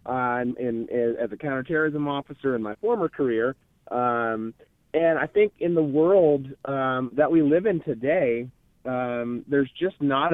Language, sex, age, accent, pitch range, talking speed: English, male, 30-49, American, 120-150 Hz, 170 wpm